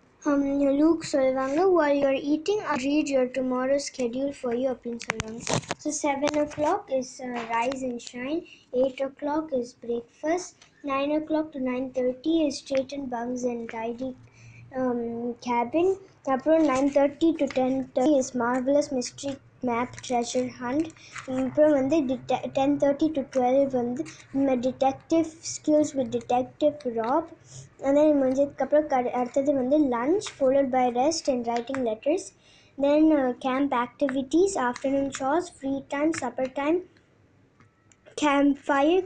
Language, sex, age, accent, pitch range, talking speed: Tamil, male, 20-39, native, 245-295 Hz, 130 wpm